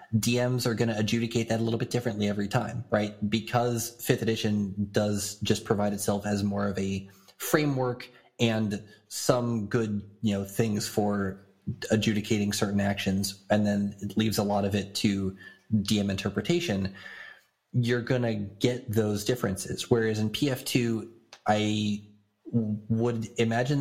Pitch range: 105-120 Hz